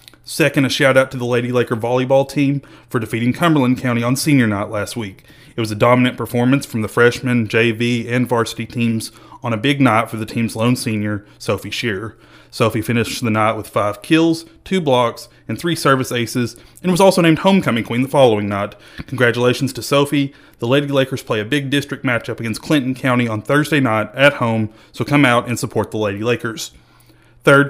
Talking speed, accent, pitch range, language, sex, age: 195 wpm, American, 115-140 Hz, English, male, 30-49